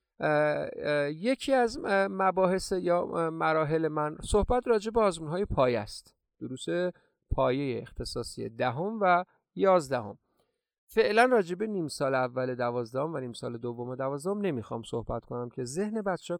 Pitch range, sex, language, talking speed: 120-185 Hz, male, Persian, 135 wpm